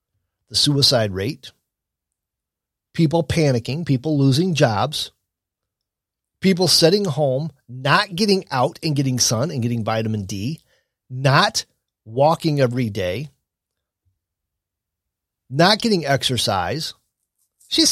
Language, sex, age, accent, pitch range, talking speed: English, male, 30-49, American, 115-190 Hz, 95 wpm